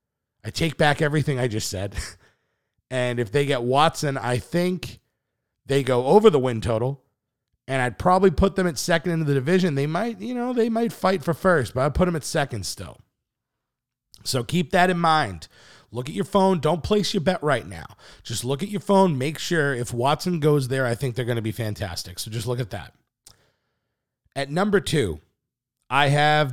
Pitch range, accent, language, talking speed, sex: 120-165 Hz, American, English, 200 wpm, male